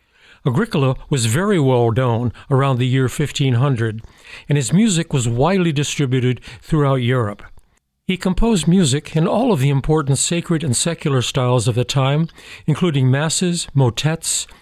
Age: 60-79